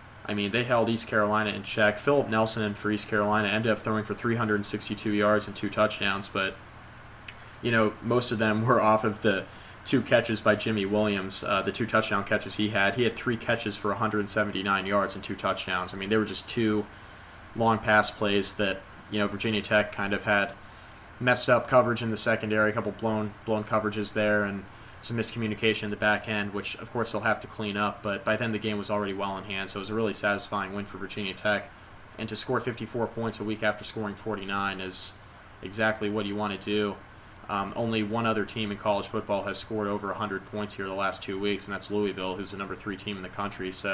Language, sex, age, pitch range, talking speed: English, male, 20-39, 100-110 Hz, 225 wpm